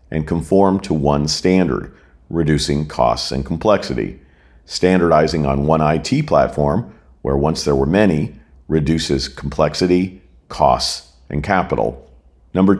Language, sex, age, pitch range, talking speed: English, male, 50-69, 75-90 Hz, 115 wpm